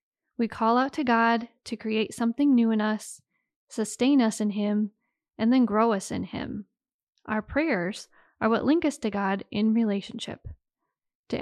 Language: English